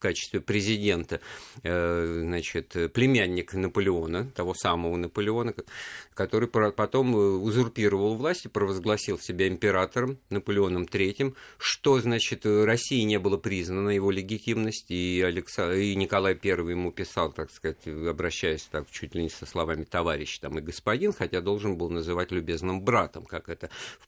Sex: male